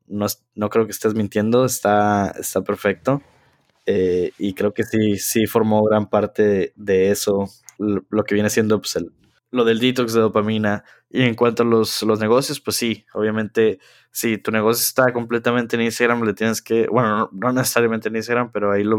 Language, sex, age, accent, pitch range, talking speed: Spanish, male, 20-39, Mexican, 105-115 Hz, 200 wpm